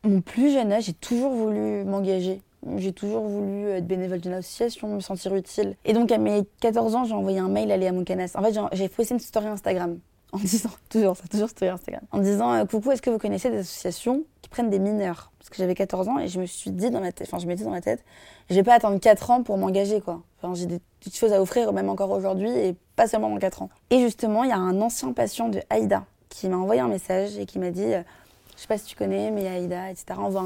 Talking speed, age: 260 wpm, 20-39